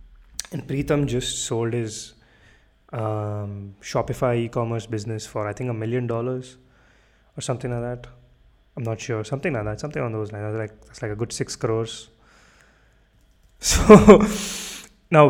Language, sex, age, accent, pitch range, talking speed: English, male, 20-39, Indian, 110-130 Hz, 155 wpm